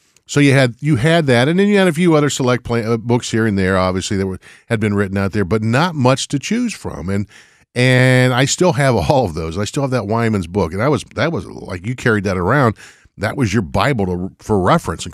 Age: 50-69